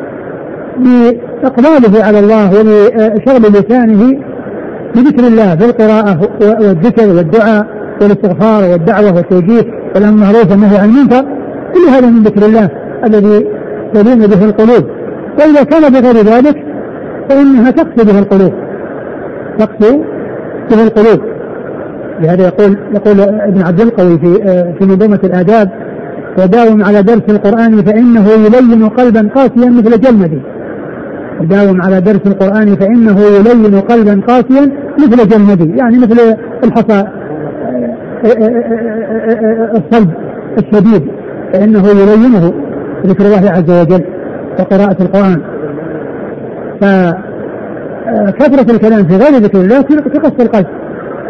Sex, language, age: male, Arabic, 60-79